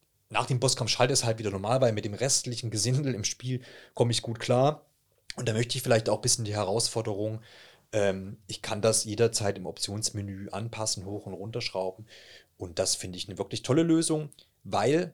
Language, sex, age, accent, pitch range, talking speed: German, male, 30-49, German, 100-125 Hz, 195 wpm